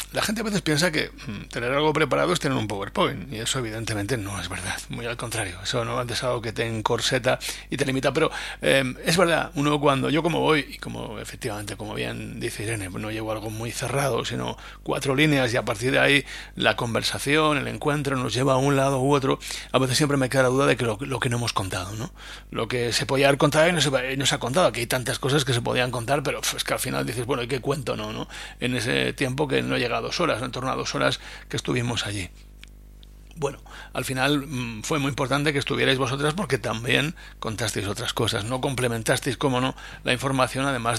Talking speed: 240 wpm